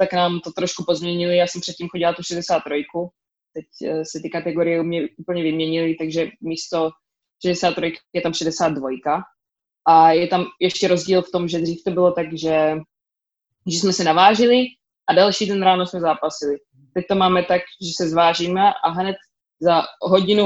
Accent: native